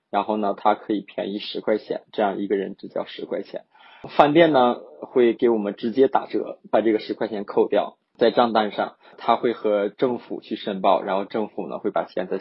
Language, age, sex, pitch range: Chinese, 20-39, male, 105-125 Hz